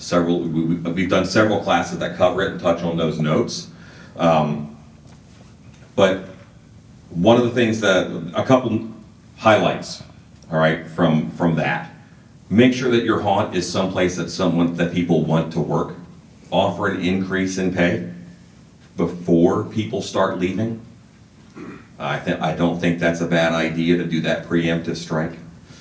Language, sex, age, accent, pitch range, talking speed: English, male, 40-59, American, 80-95 Hz, 150 wpm